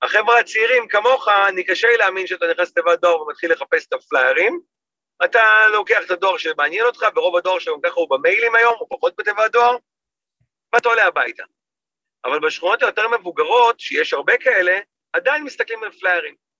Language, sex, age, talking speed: Hebrew, male, 40-59, 165 wpm